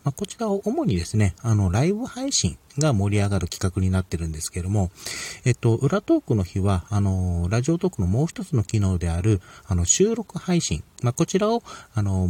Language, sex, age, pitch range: Japanese, male, 40-59, 95-135 Hz